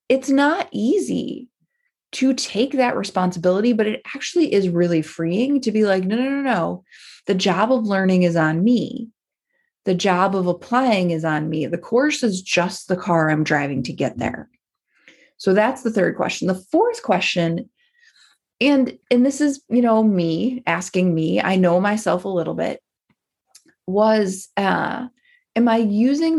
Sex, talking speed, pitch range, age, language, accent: female, 165 wpm, 175-250 Hz, 20-39, English, American